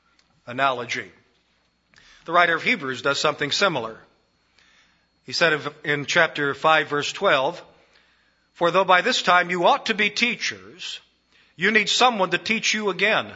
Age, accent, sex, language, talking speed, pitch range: 50-69, American, male, English, 145 wpm, 145-185 Hz